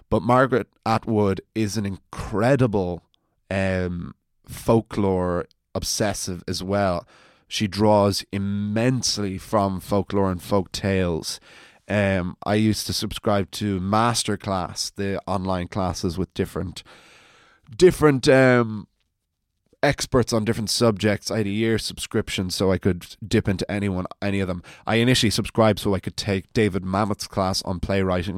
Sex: male